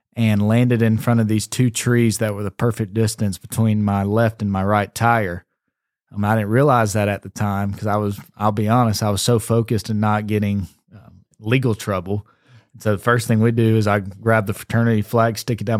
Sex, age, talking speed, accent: male, 20-39, 230 wpm, American